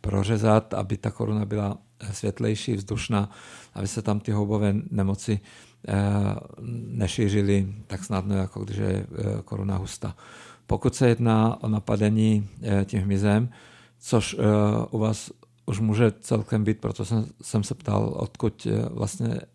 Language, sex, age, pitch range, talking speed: Czech, male, 50-69, 105-115 Hz, 125 wpm